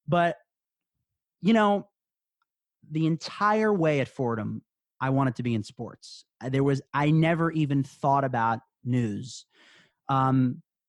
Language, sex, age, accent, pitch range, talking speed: English, male, 30-49, American, 125-165 Hz, 125 wpm